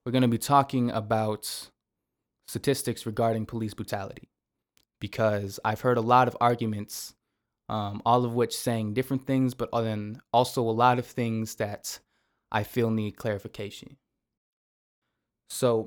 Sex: male